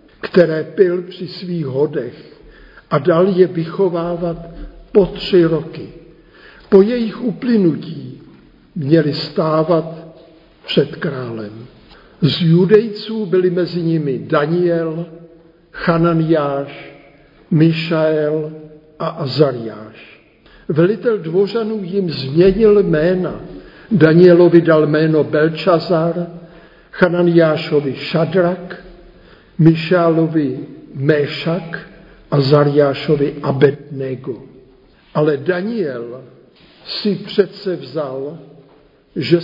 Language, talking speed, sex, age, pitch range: Czech, 80 wpm, male, 60-79, 150-180 Hz